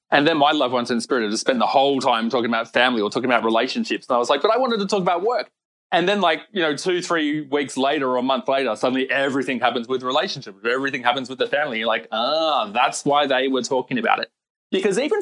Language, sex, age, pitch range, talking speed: English, male, 20-39, 125-200 Hz, 260 wpm